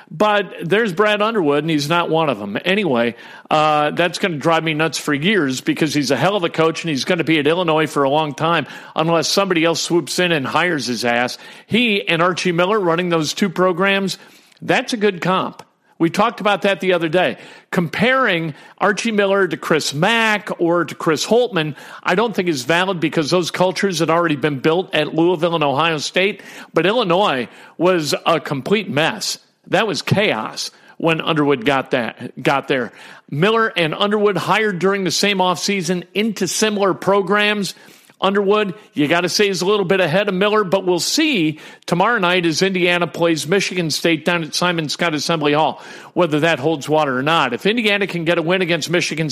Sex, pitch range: male, 160-200 Hz